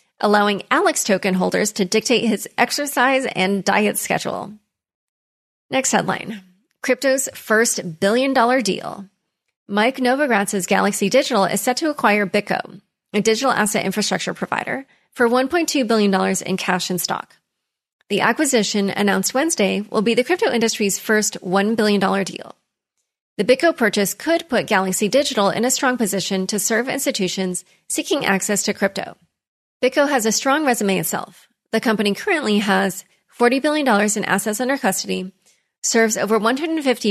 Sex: female